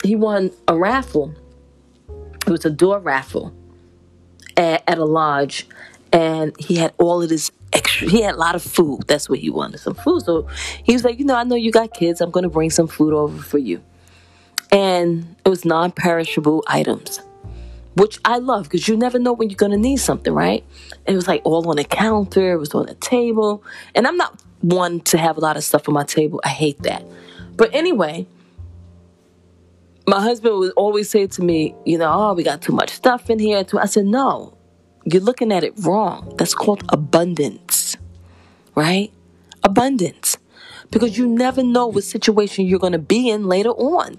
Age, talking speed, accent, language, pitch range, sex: 20-39, 195 wpm, American, English, 145-230 Hz, female